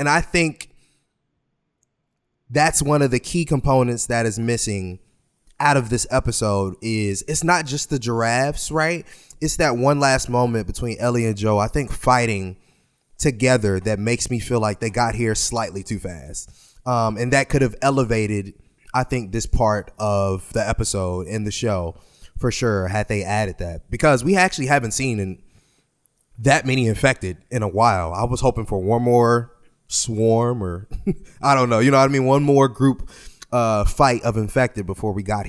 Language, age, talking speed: English, 20-39, 180 wpm